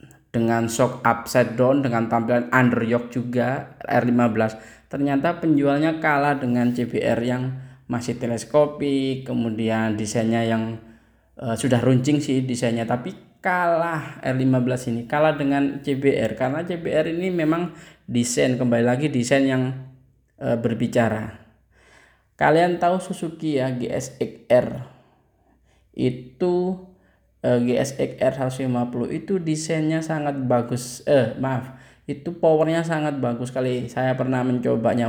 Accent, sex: native, male